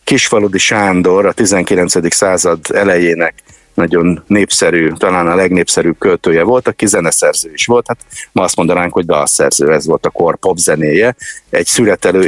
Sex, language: male, Hungarian